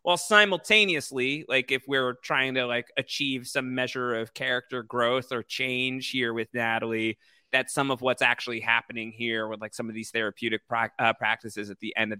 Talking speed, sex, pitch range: 190 wpm, male, 115-150 Hz